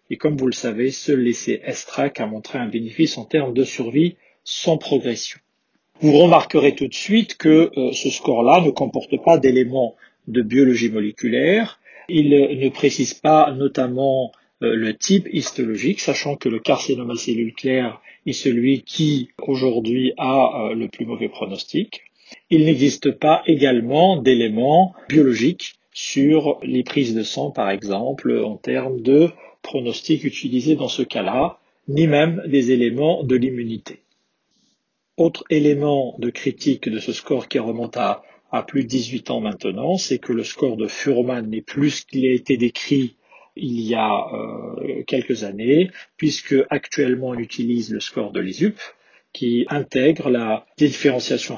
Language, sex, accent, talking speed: French, male, French, 155 wpm